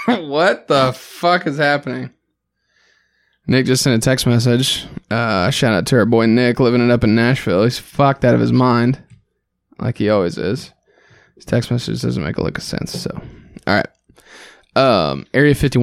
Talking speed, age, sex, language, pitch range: 180 wpm, 20-39, male, English, 115-130 Hz